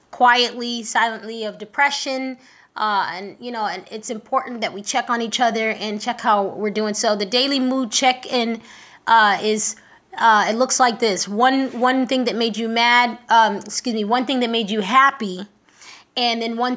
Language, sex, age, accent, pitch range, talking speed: English, female, 20-39, American, 205-240 Hz, 190 wpm